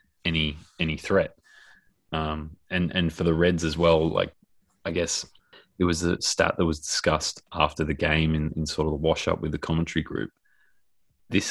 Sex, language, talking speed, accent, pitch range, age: male, English, 190 wpm, Australian, 75-80 Hz, 20-39